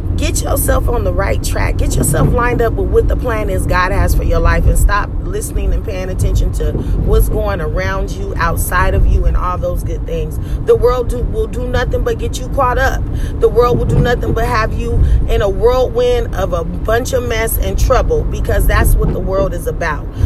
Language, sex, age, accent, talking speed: English, female, 30-49, American, 220 wpm